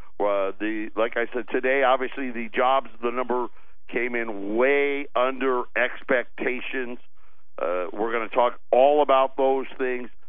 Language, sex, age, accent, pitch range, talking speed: English, male, 50-69, American, 110-135 Hz, 145 wpm